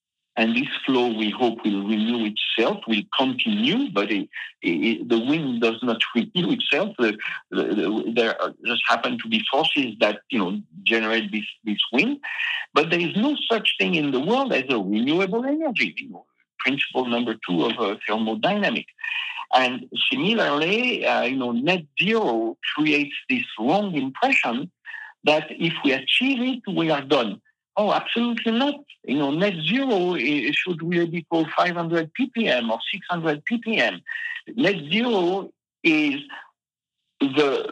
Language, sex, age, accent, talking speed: English, male, 60-79, French, 140 wpm